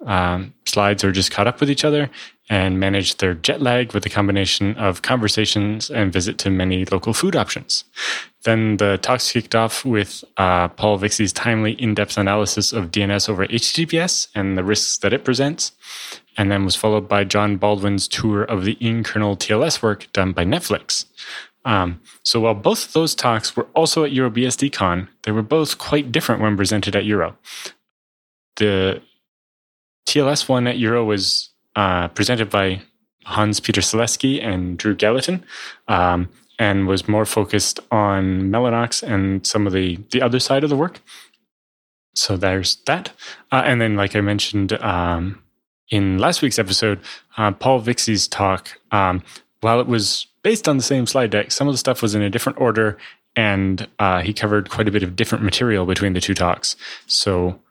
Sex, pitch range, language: male, 95-120 Hz, English